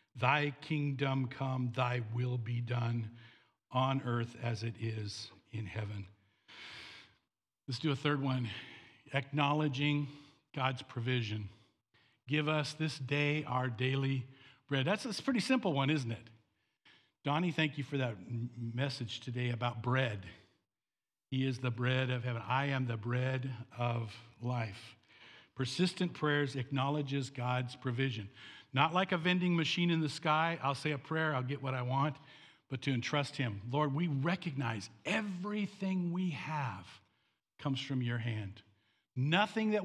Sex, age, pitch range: male, 60-79, 115-145 Hz